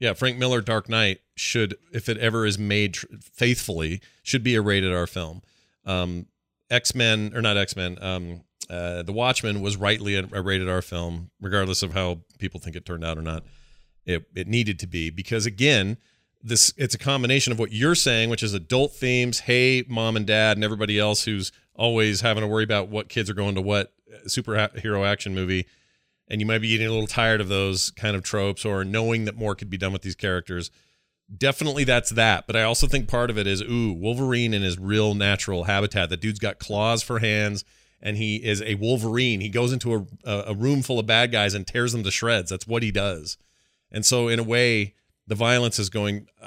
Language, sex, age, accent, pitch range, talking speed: English, male, 40-59, American, 95-115 Hz, 215 wpm